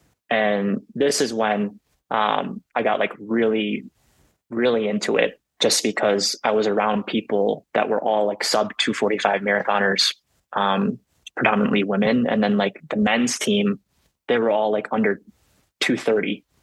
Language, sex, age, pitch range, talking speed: English, male, 20-39, 100-120 Hz, 145 wpm